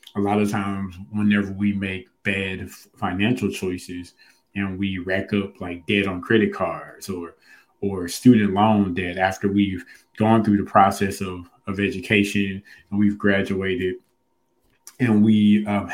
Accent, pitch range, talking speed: American, 90-105 Hz, 145 wpm